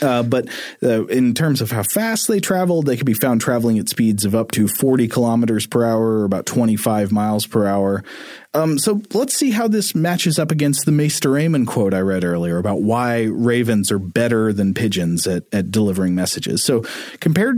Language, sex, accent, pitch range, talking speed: English, male, American, 105-140 Hz, 200 wpm